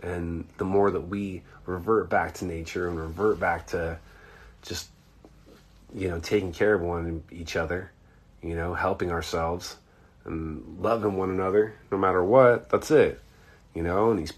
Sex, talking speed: male, 165 wpm